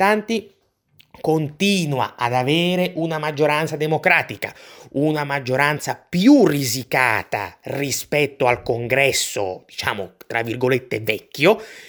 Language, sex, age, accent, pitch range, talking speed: Italian, male, 30-49, native, 125-155 Hz, 85 wpm